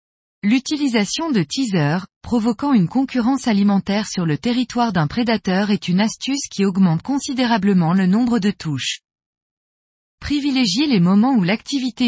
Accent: French